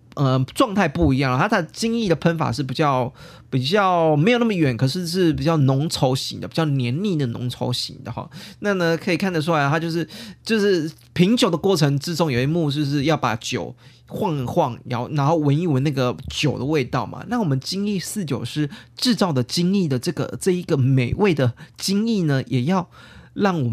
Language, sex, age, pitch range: Chinese, male, 20-39, 130-180 Hz